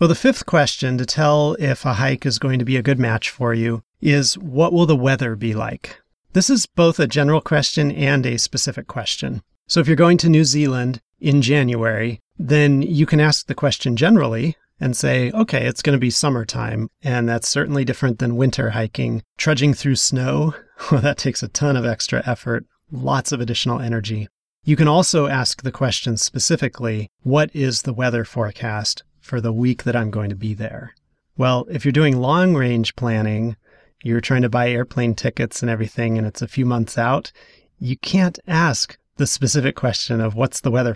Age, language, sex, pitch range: 30-49, English, male, 120-145 Hz